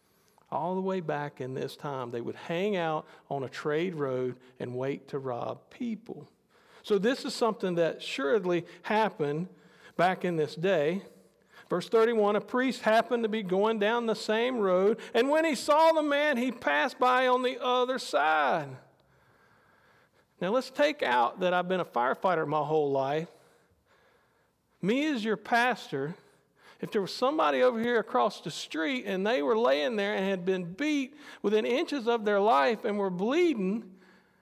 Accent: American